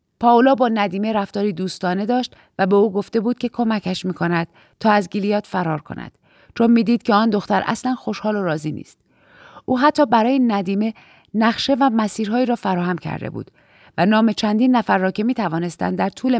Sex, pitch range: female, 185-245 Hz